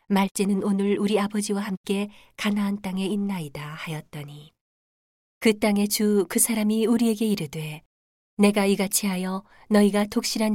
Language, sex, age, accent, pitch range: Korean, female, 40-59, native, 170-210 Hz